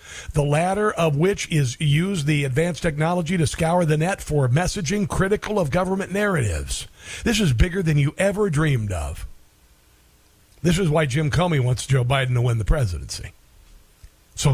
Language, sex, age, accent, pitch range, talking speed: English, male, 50-69, American, 130-175 Hz, 165 wpm